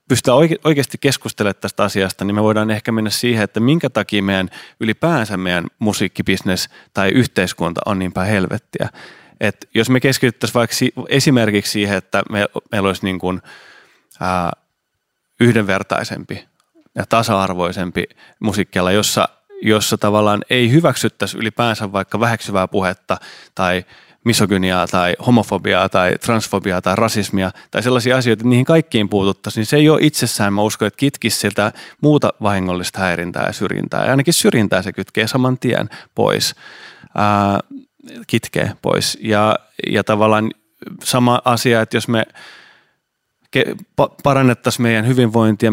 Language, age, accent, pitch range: Finnish, 30-49, native, 100-120 Hz